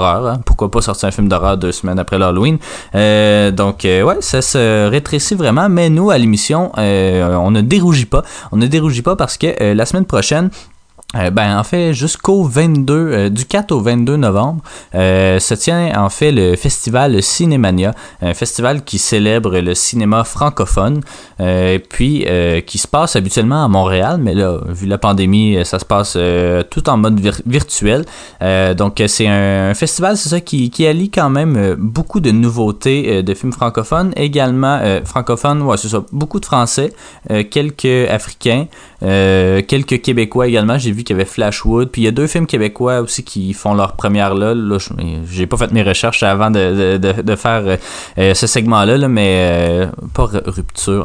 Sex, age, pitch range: male, 20-39, 95-130 Hz